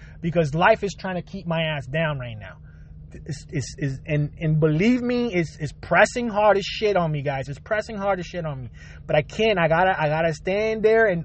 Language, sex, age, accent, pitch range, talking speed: English, male, 30-49, American, 105-180 Hz, 215 wpm